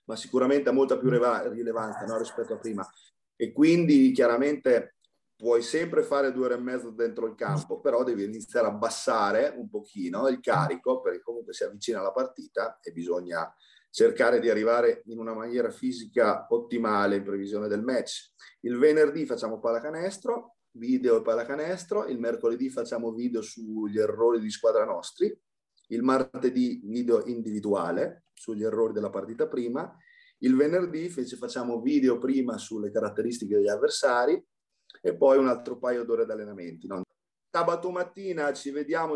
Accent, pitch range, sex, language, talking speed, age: native, 120-185 Hz, male, Italian, 150 wpm, 30-49